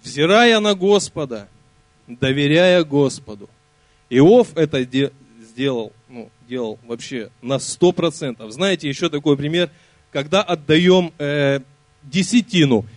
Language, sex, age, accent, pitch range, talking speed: Russian, male, 20-39, native, 125-165 Hz, 100 wpm